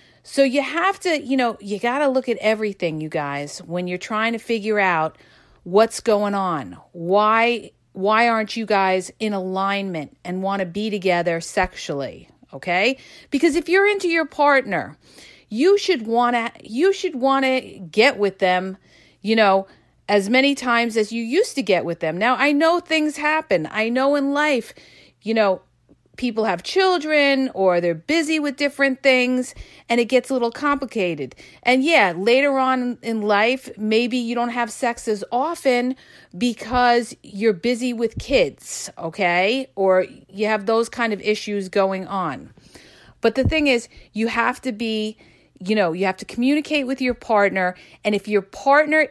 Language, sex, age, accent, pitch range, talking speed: English, female, 40-59, American, 195-265 Hz, 170 wpm